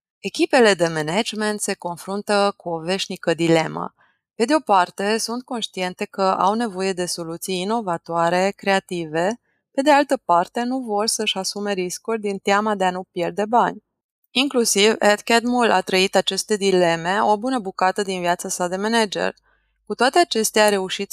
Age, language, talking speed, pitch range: 20-39, Romanian, 160 wpm, 185-225 Hz